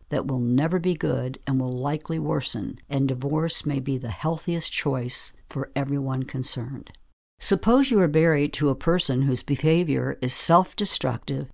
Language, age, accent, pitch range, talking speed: English, 60-79, American, 130-160 Hz, 155 wpm